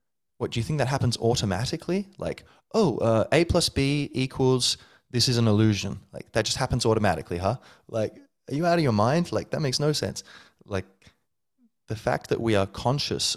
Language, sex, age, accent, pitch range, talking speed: English, male, 20-39, Australian, 90-115 Hz, 195 wpm